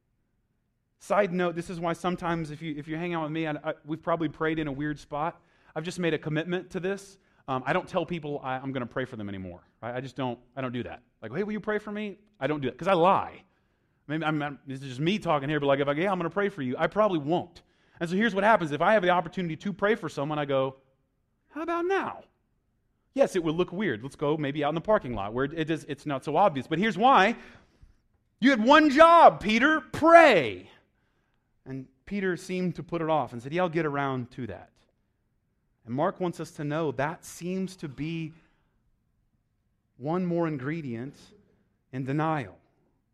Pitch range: 140-205 Hz